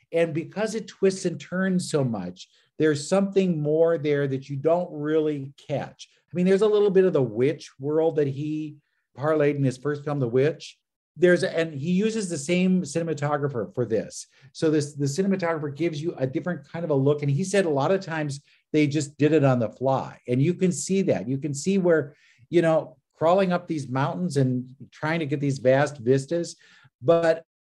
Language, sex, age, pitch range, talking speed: English, male, 50-69, 140-170 Hz, 205 wpm